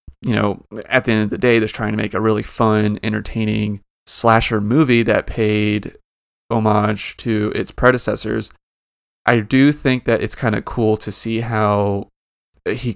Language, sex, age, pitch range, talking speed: English, male, 30-49, 105-115 Hz, 165 wpm